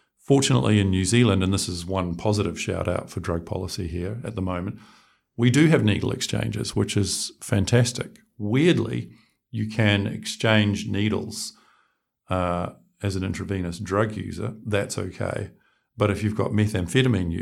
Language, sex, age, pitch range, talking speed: English, male, 50-69, 95-110 Hz, 150 wpm